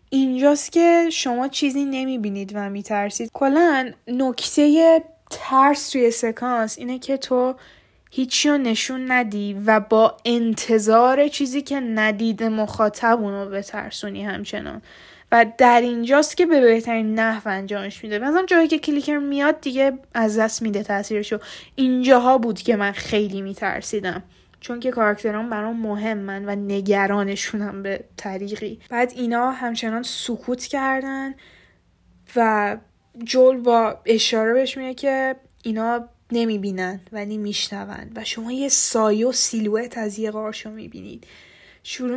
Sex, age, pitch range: female, 10-29, 215-260 Hz